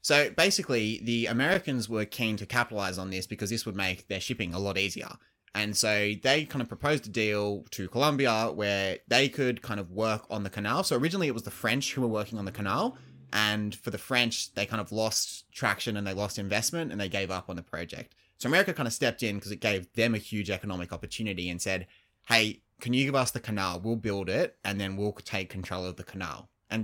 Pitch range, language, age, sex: 95-120 Hz, English, 20-39, male